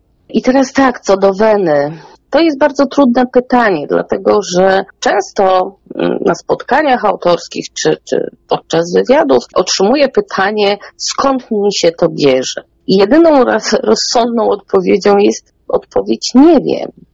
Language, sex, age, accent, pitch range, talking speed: Polish, female, 30-49, native, 160-215 Hz, 125 wpm